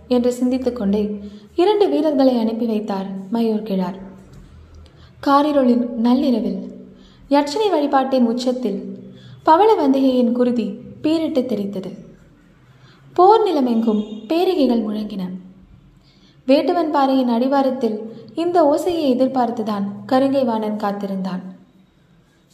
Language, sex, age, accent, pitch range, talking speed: Tamil, female, 20-39, native, 205-290 Hz, 45 wpm